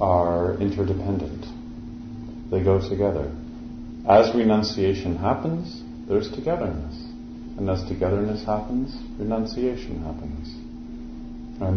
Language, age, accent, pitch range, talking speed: English, 40-59, American, 80-110 Hz, 85 wpm